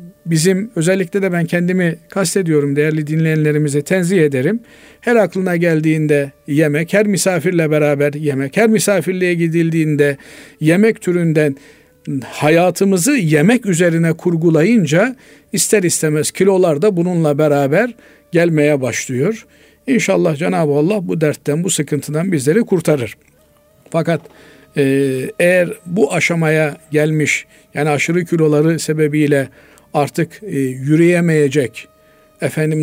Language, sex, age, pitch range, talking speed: Turkish, male, 50-69, 150-185 Hz, 100 wpm